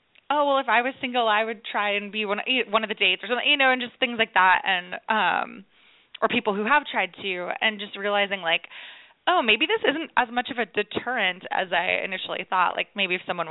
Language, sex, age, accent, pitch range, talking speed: English, female, 20-39, American, 185-250 Hz, 235 wpm